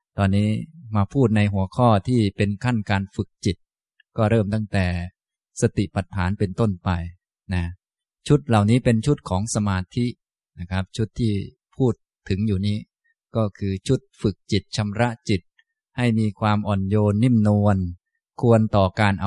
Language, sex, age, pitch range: Thai, male, 20-39, 100-120 Hz